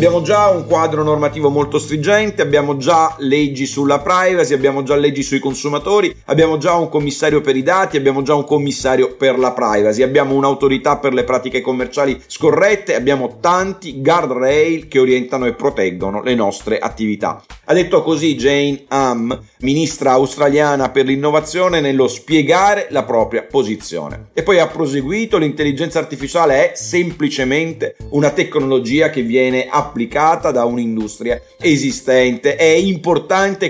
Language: Italian